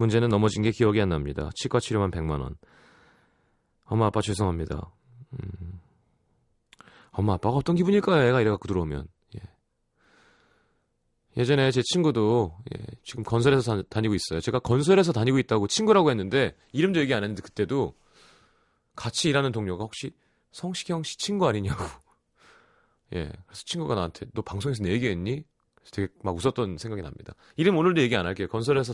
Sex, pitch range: male, 100-150 Hz